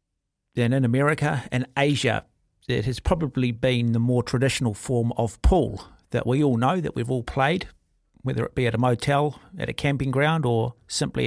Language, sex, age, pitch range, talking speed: English, male, 50-69, 115-145 Hz, 185 wpm